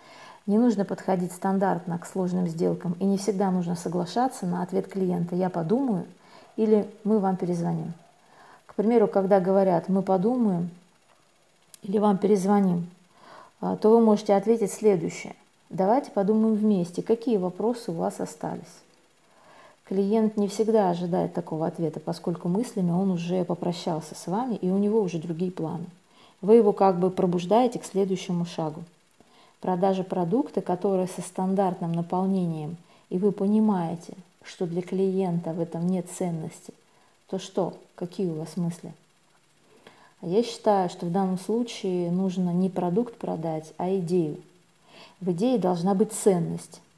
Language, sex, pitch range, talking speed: Russian, female, 175-205 Hz, 140 wpm